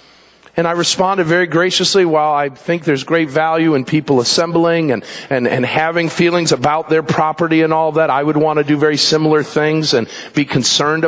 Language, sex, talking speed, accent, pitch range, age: English, male, 195 wpm, American, 155-200 Hz, 50-69